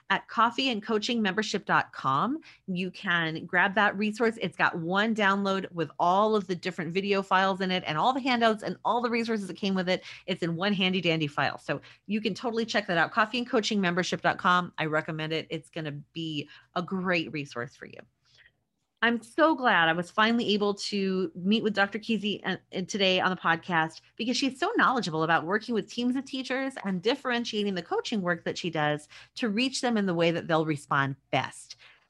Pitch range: 170-235 Hz